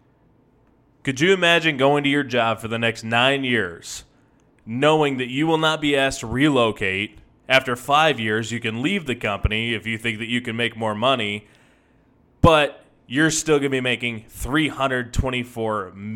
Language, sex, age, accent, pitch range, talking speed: English, male, 20-39, American, 110-135 Hz, 170 wpm